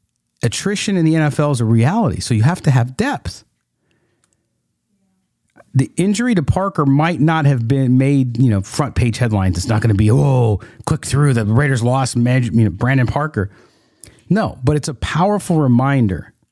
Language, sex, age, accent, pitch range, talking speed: English, male, 40-59, American, 115-165 Hz, 175 wpm